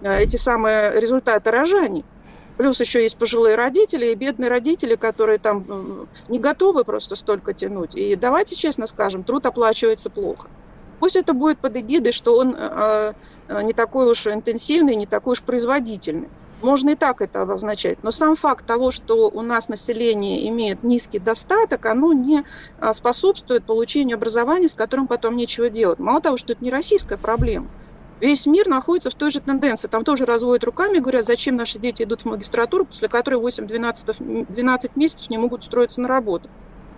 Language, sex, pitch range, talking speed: Russian, female, 225-285 Hz, 165 wpm